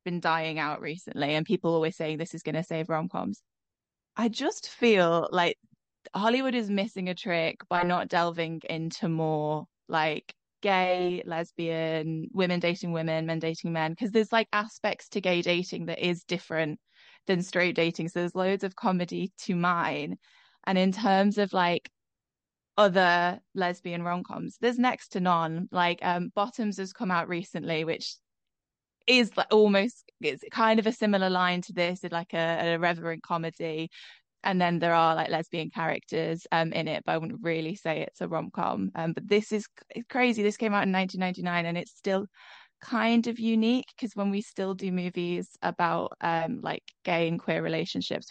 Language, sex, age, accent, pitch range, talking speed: English, female, 20-39, British, 165-205 Hz, 175 wpm